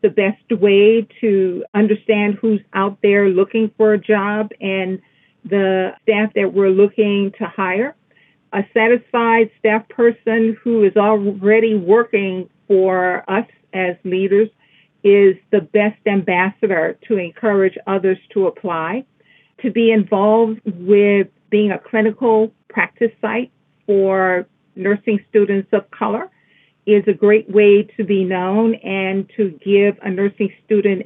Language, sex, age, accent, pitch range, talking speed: English, female, 50-69, American, 190-215 Hz, 130 wpm